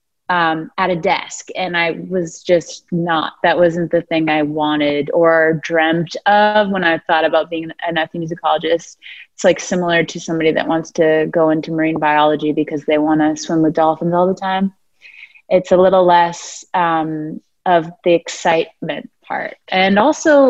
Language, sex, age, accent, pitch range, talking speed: English, female, 20-39, American, 165-190 Hz, 170 wpm